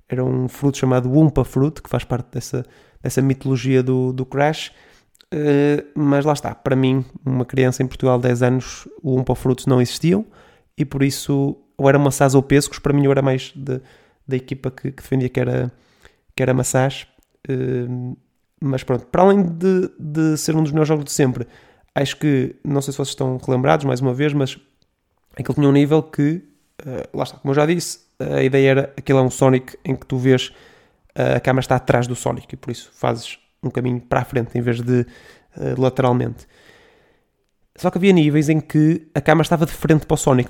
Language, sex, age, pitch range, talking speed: Portuguese, male, 20-39, 125-145 Hz, 210 wpm